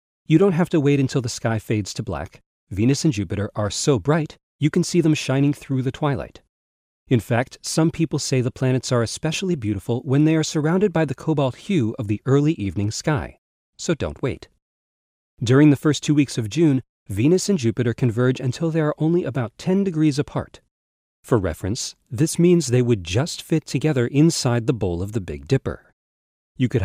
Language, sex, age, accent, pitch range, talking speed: English, male, 40-59, American, 105-155 Hz, 195 wpm